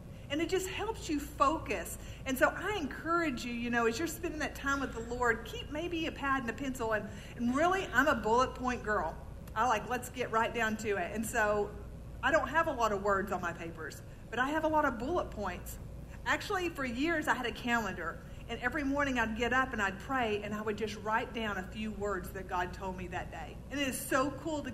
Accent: American